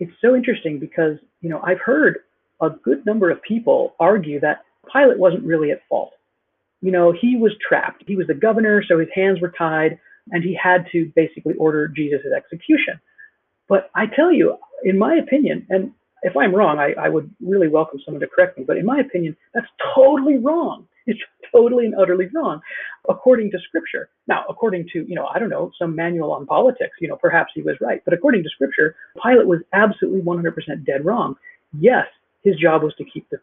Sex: female